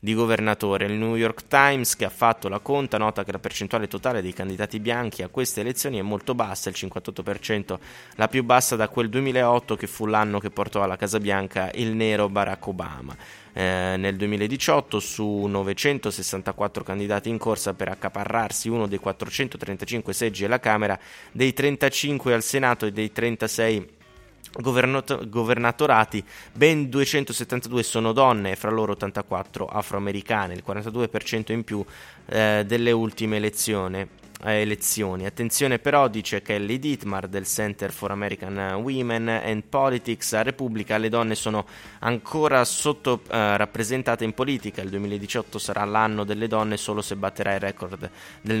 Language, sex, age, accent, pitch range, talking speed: Italian, male, 20-39, native, 100-120 Hz, 150 wpm